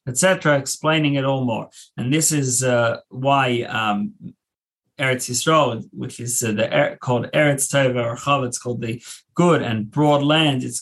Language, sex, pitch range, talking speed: English, male, 120-145 Hz, 170 wpm